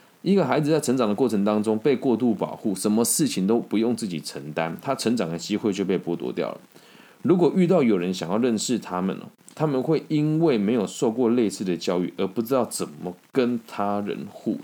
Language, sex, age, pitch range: Chinese, male, 20-39, 85-110 Hz